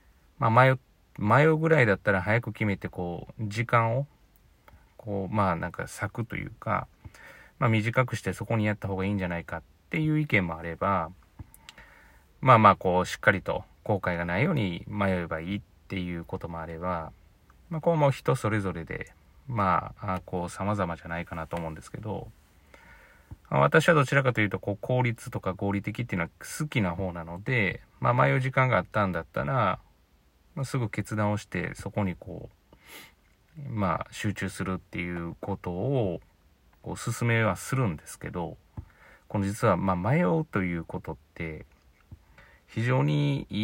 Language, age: Japanese, 30-49